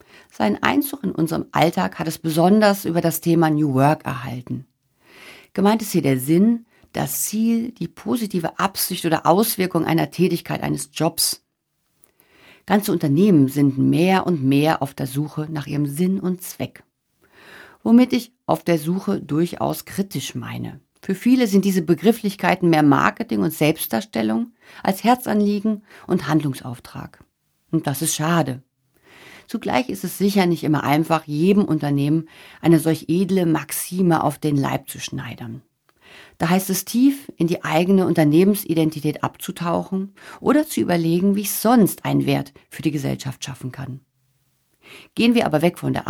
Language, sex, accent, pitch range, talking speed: German, female, German, 145-195 Hz, 150 wpm